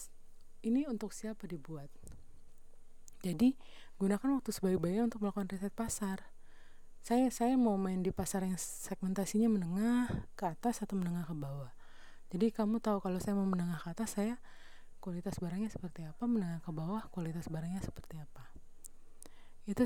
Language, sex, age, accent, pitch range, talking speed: Indonesian, female, 30-49, native, 155-205 Hz, 150 wpm